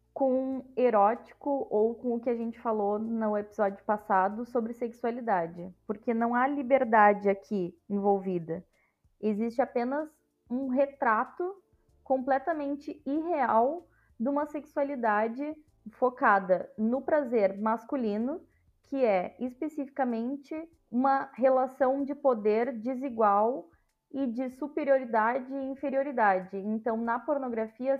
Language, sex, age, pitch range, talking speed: Portuguese, female, 20-39, 220-280 Hz, 105 wpm